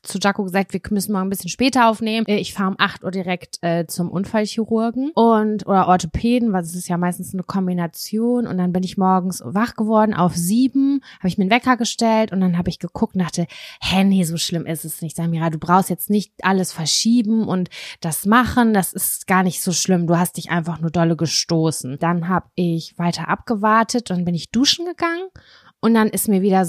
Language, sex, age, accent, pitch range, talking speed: German, female, 20-39, German, 175-215 Hz, 215 wpm